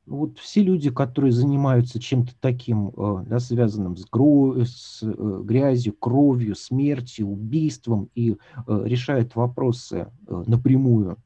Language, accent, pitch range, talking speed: Russian, native, 105-130 Hz, 105 wpm